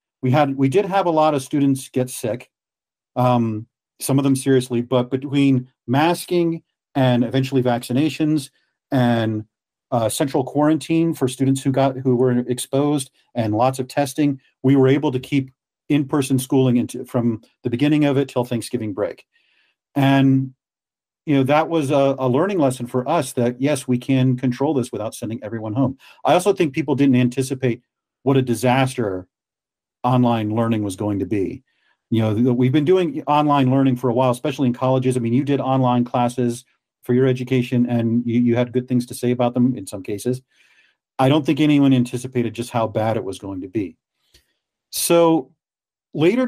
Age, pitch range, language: 40-59, 125-145 Hz, English